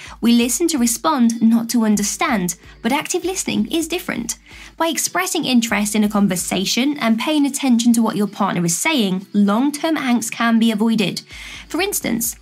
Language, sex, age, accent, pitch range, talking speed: English, female, 20-39, British, 210-295 Hz, 165 wpm